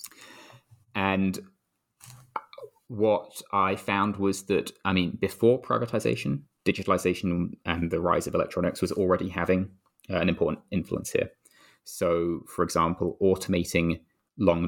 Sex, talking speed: male, 115 wpm